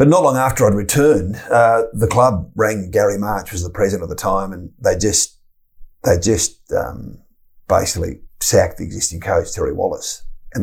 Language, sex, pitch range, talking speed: English, male, 90-110 Hz, 185 wpm